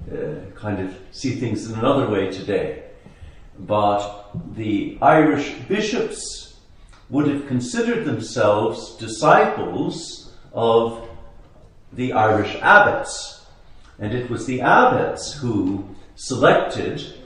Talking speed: 100 wpm